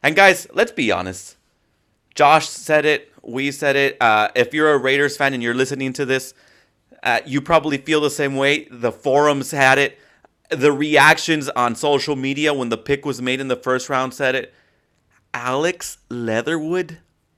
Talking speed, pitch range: 175 wpm, 130-160 Hz